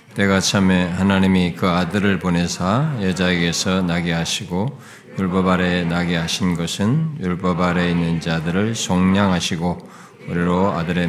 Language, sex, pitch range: Korean, male, 90-135 Hz